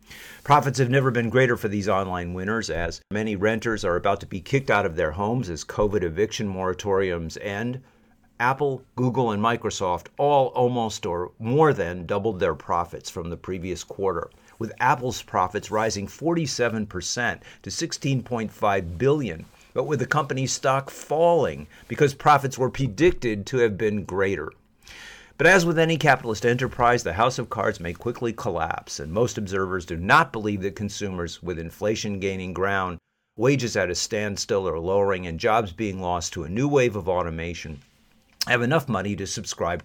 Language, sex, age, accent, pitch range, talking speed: English, male, 50-69, American, 95-125 Hz, 165 wpm